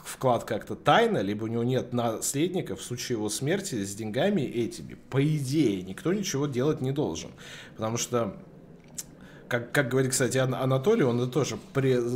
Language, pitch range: Russian, 105-135 Hz